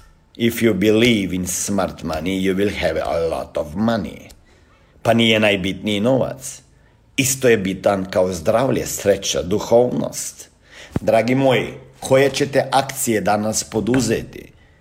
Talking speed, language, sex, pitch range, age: 125 wpm, Croatian, male, 120-200 Hz, 50-69